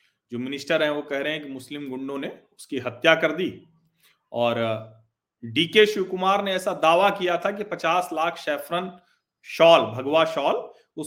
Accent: native